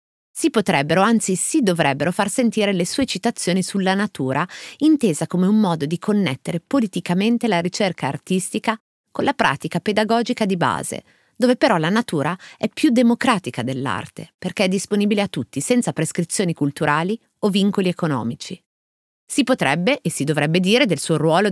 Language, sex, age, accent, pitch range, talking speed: Italian, female, 30-49, native, 155-215 Hz, 155 wpm